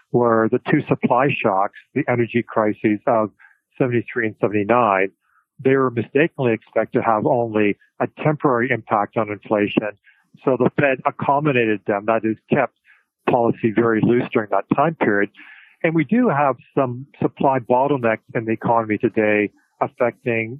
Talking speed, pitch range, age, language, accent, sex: 150 wpm, 110-135 Hz, 40-59, English, American, male